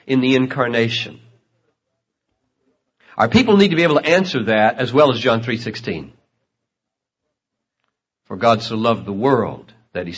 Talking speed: 145 wpm